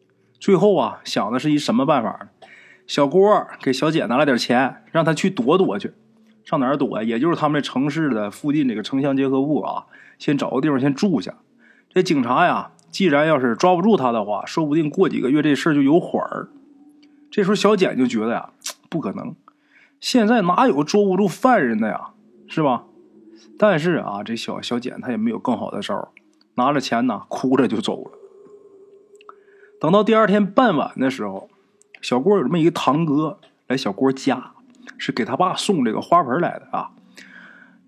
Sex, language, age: male, Chinese, 20-39